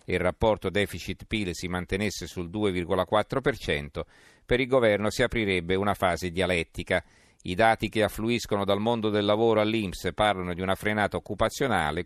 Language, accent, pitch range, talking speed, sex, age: Italian, native, 95-110 Hz, 150 wpm, male, 50-69